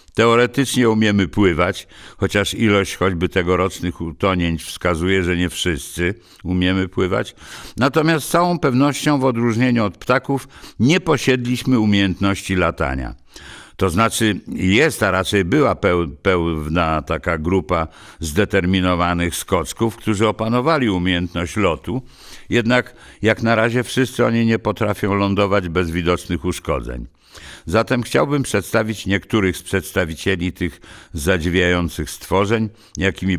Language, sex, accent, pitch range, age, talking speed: English, male, Polish, 90-115 Hz, 60-79, 115 wpm